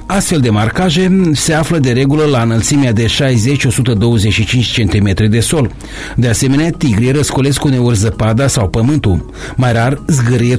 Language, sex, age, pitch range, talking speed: Romanian, male, 30-49, 115-155 Hz, 140 wpm